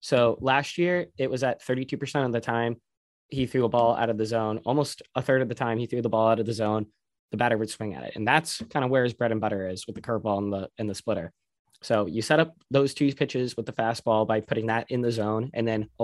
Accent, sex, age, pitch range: American, male, 20-39, 115-140 Hz